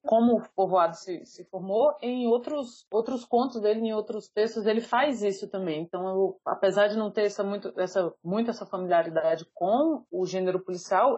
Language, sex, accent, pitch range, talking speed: Portuguese, female, Brazilian, 195-250 Hz, 185 wpm